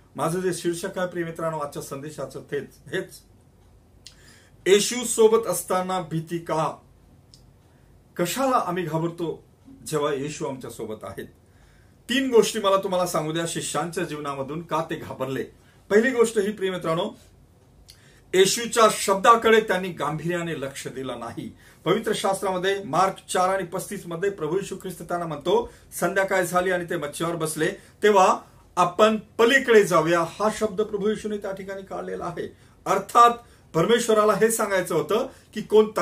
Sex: male